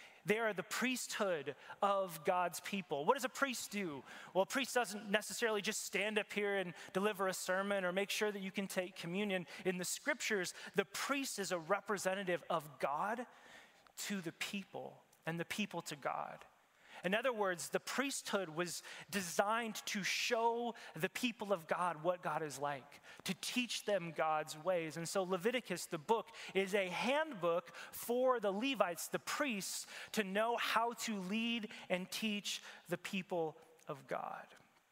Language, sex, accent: English, male, American